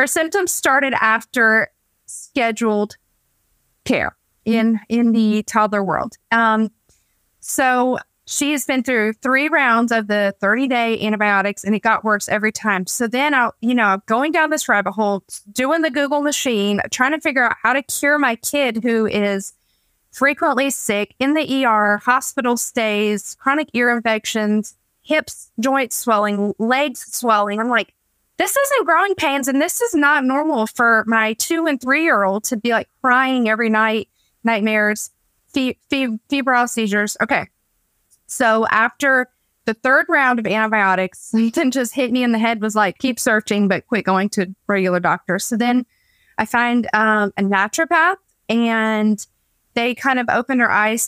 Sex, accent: female, American